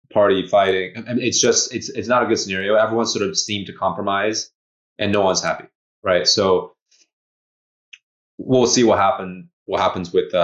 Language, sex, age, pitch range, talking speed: English, male, 20-39, 85-105 Hz, 180 wpm